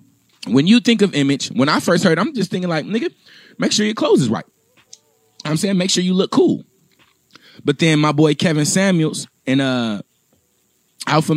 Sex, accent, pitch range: male, American, 130-170 Hz